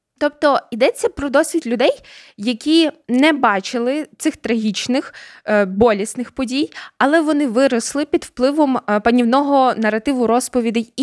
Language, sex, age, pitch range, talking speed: Ukrainian, female, 20-39, 220-270 Hz, 110 wpm